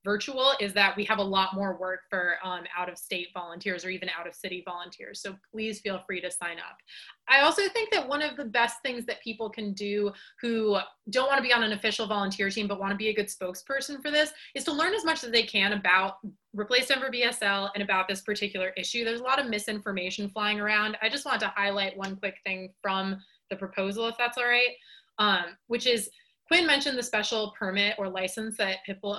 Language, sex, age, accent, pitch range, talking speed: English, female, 20-39, American, 195-245 Hz, 220 wpm